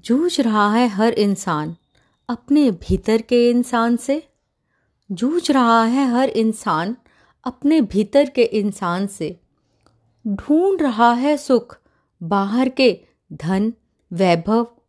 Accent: native